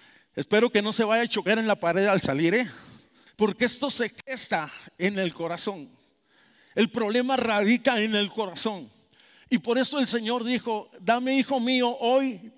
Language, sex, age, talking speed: Spanish, male, 50-69, 170 wpm